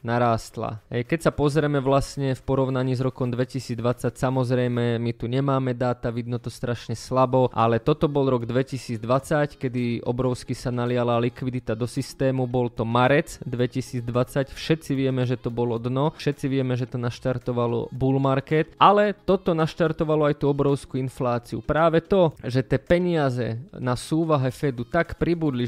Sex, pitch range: male, 125-140 Hz